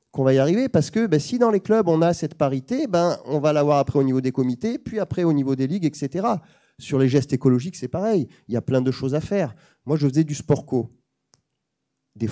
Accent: French